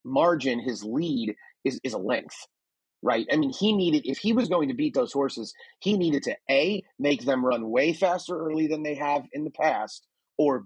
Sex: male